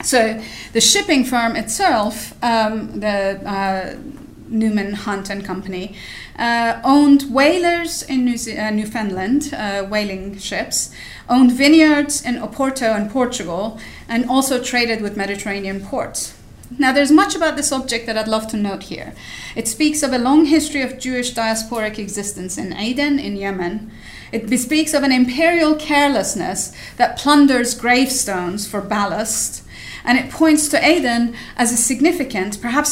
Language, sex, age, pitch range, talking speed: English, female, 30-49, 215-285 Hz, 145 wpm